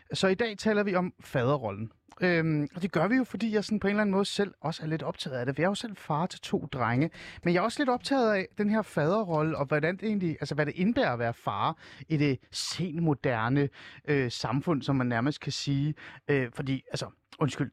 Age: 30-49